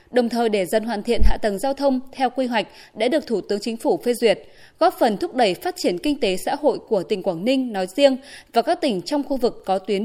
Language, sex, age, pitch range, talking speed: Vietnamese, female, 20-39, 215-280 Hz, 270 wpm